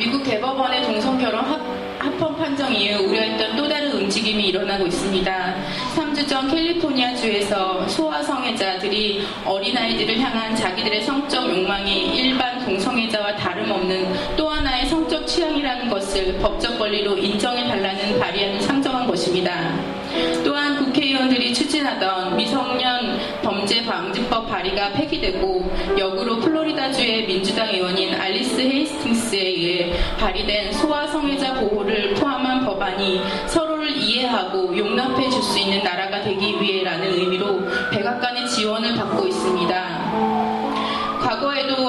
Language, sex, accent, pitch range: Korean, female, native, 195-270 Hz